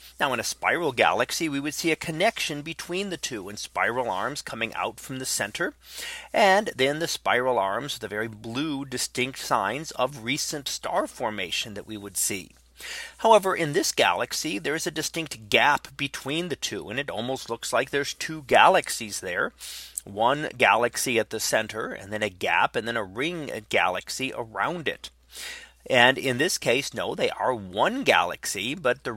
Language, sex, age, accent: English, male, 30-49, American